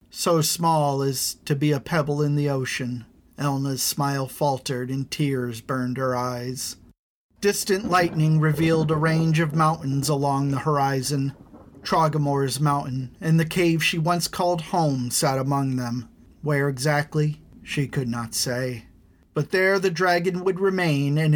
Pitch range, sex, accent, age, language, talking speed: 130-160 Hz, male, American, 40-59, English, 150 wpm